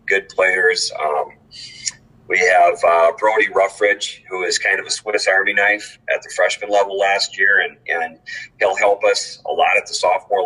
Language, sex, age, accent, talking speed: English, male, 40-59, American, 185 wpm